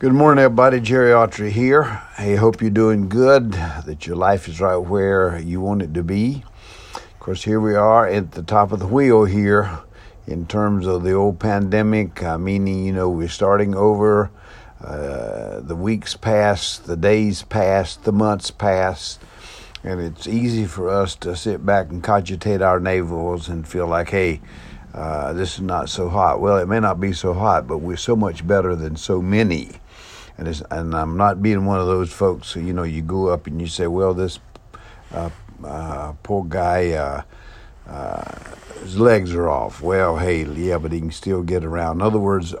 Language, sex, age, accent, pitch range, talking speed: English, male, 60-79, American, 85-105 Hz, 190 wpm